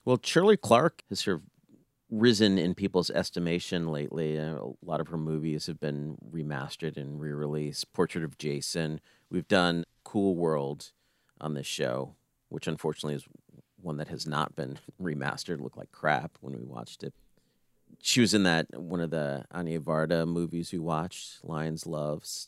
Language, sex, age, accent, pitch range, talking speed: English, male, 40-59, American, 75-95 Hz, 165 wpm